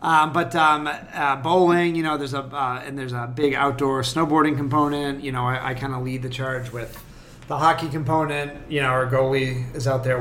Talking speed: 215 wpm